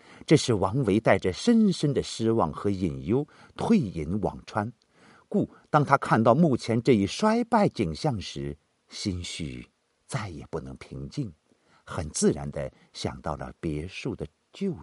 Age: 50-69